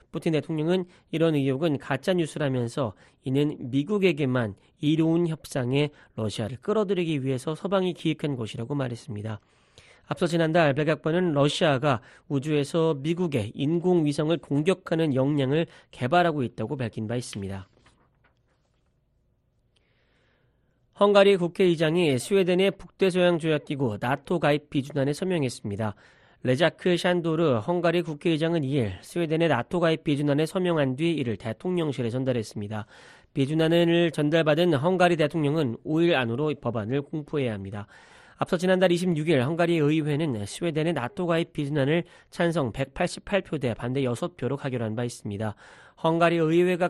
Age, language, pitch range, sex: 40-59, Korean, 125-170 Hz, male